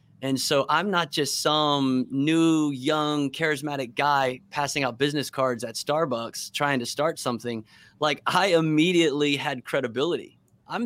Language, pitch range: English, 120-150 Hz